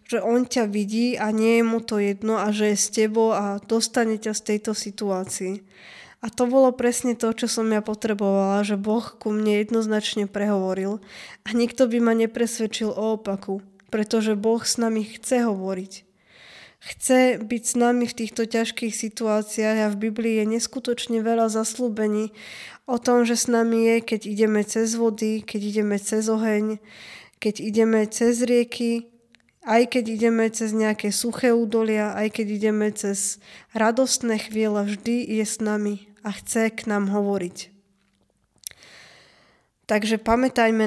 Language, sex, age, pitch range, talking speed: Slovak, female, 10-29, 210-230 Hz, 155 wpm